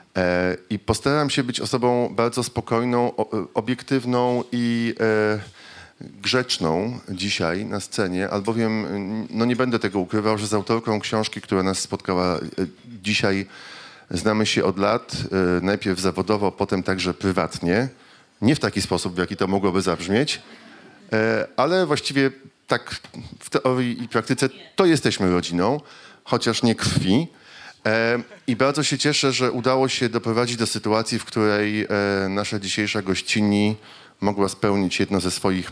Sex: male